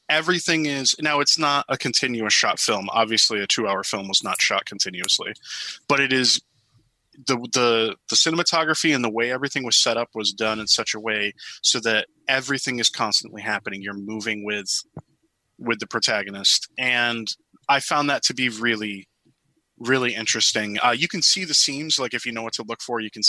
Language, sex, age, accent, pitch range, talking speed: English, male, 20-39, American, 110-140 Hz, 195 wpm